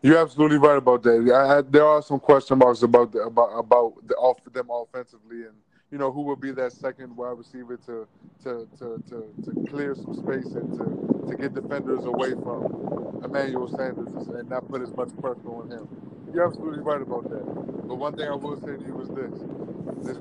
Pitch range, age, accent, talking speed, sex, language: 125-145 Hz, 20-39, American, 210 wpm, male, English